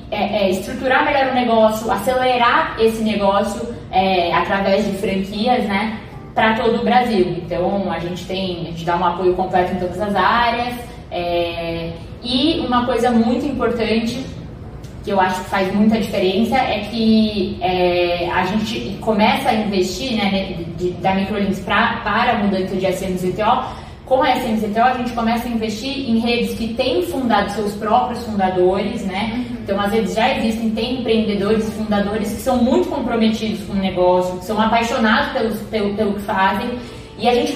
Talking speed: 170 wpm